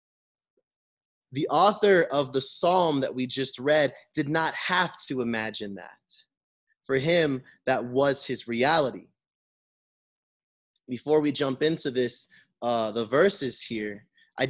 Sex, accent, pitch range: male, American, 130-185 Hz